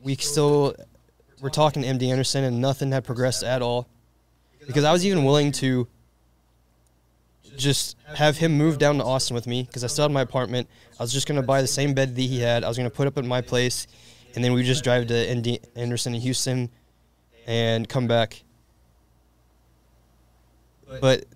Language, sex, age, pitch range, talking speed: English, male, 20-39, 115-140 Hz, 200 wpm